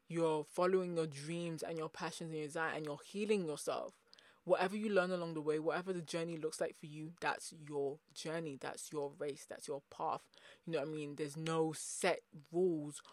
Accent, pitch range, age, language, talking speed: British, 155-185 Hz, 20-39, English, 205 wpm